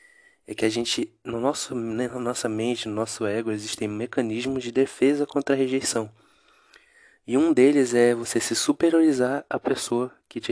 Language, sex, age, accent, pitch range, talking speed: Portuguese, male, 20-39, Brazilian, 105-125 Hz, 165 wpm